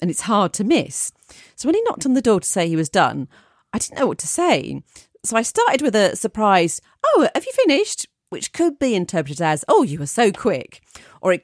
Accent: British